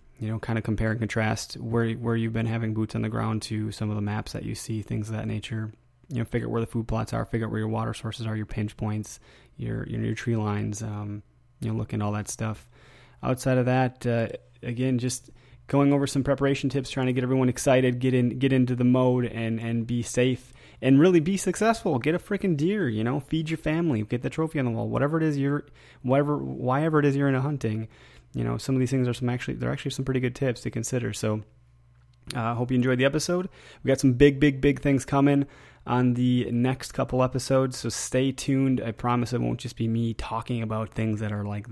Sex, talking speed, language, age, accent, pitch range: male, 245 wpm, English, 20-39, American, 110-130 Hz